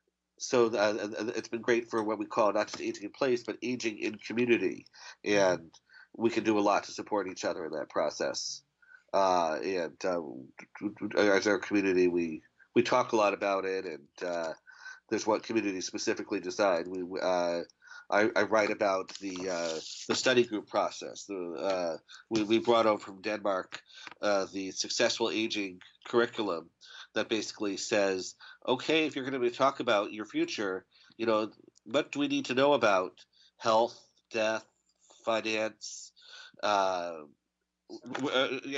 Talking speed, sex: 155 wpm, male